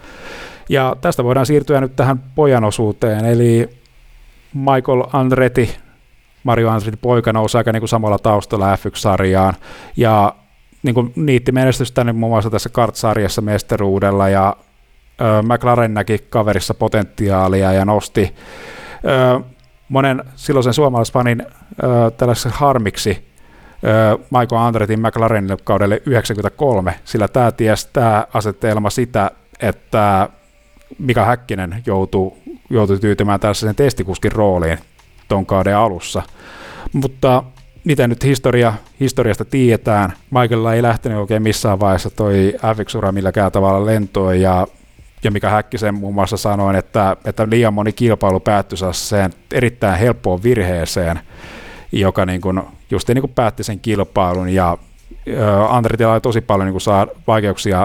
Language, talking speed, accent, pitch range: Finnish, 115 wpm, native, 100-120 Hz